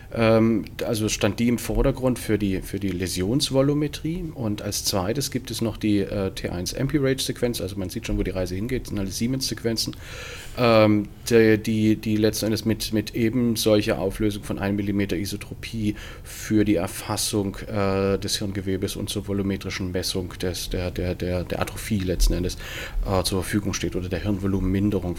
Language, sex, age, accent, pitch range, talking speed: German, male, 40-59, German, 95-115 Hz, 175 wpm